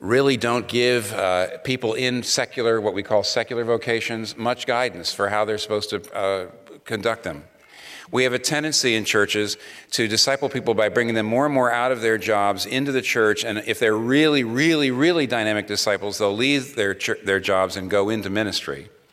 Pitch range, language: 105-135 Hz, English